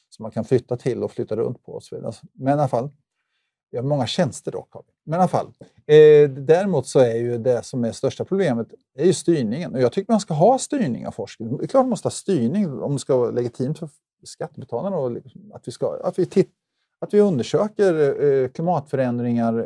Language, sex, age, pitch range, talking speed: Swedish, male, 30-49, 120-160 Hz, 215 wpm